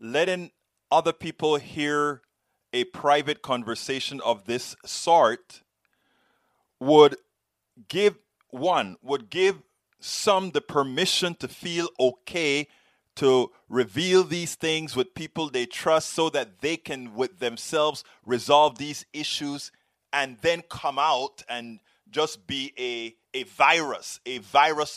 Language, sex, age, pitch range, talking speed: English, male, 30-49, 130-165 Hz, 120 wpm